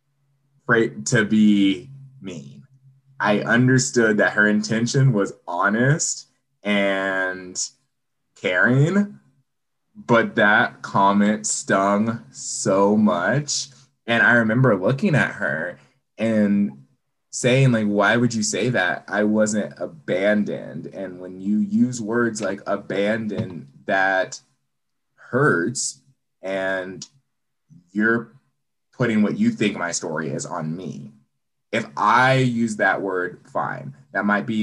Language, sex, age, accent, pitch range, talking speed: English, male, 20-39, American, 95-130 Hz, 110 wpm